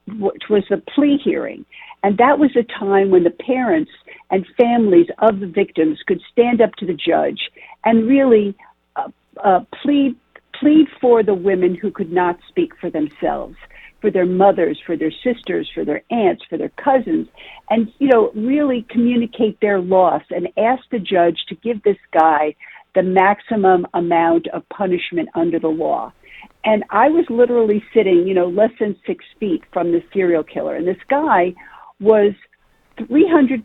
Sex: female